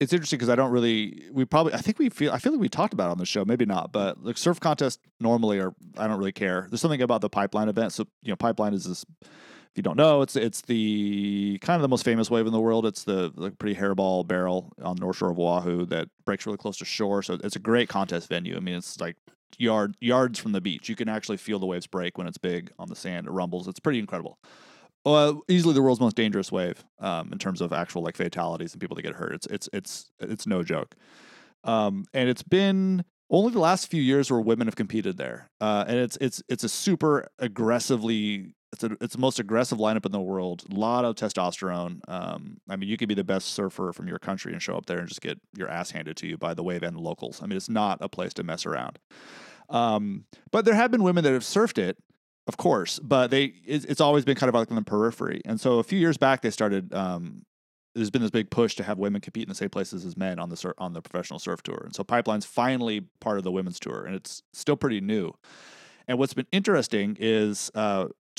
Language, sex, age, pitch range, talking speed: English, male, 30-49, 100-135 Hz, 250 wpm